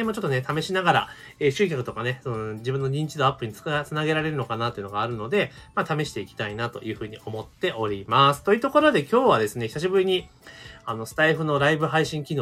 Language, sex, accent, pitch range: Japanese, male, native, 110-165 Hz